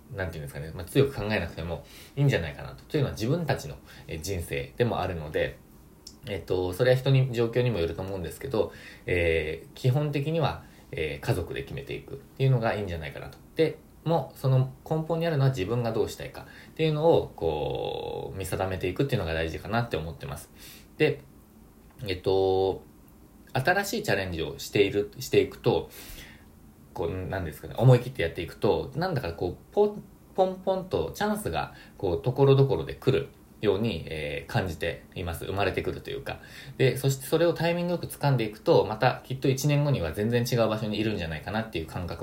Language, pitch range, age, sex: Japanese, 85-135 Hz, 20-39, male